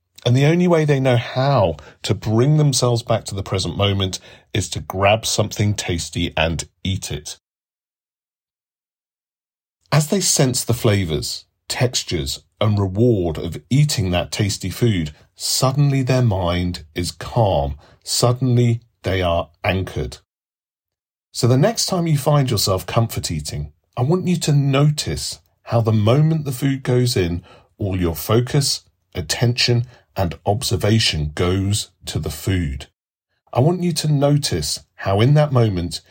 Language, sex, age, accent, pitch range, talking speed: English, male, 40-59, British, 90-125 Hz, 140 wpm